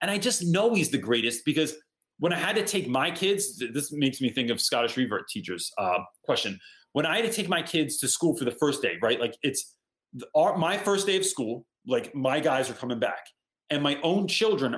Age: 30-49